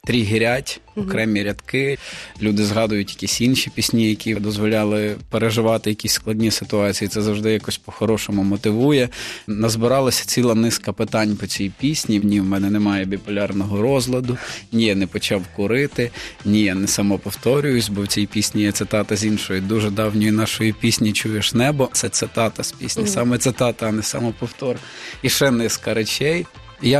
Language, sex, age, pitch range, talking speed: Ukrainian, male, 20-39, 105-120 Hz, 155 wpm